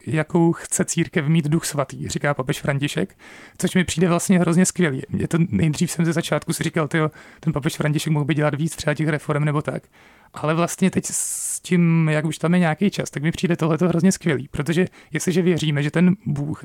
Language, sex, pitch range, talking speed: Czech, male, 150-175 Hz, 215 wpm